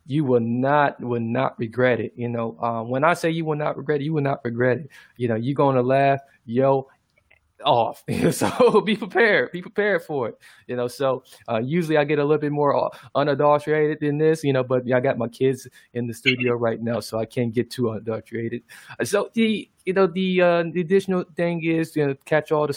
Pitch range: 120-150 Hz